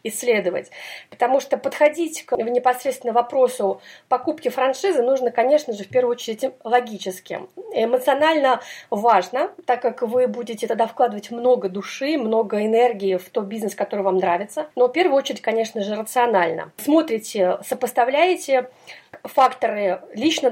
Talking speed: 130 wpm